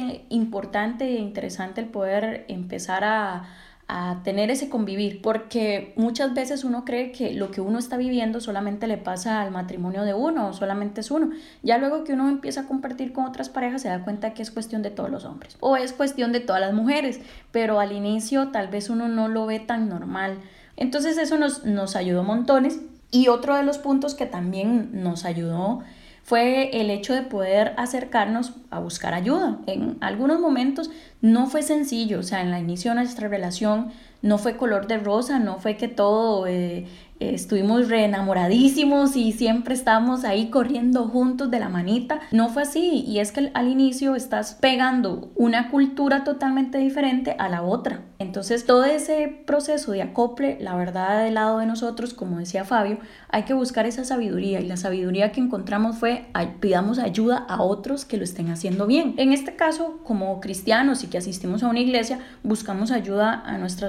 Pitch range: 205-260 Hz